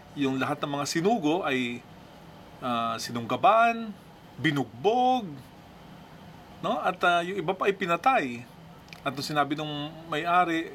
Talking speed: 125 wpm